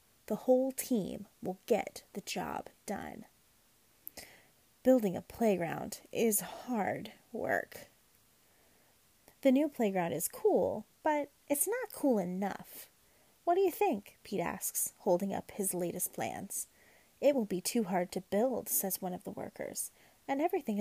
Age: 30-49